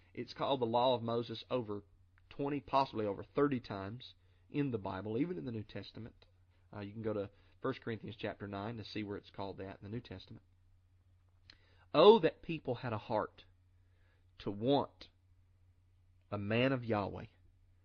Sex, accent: male, American